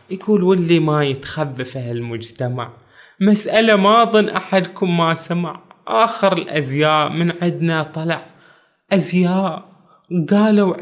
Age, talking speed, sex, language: 20-39, 105 wpm, male, Arabic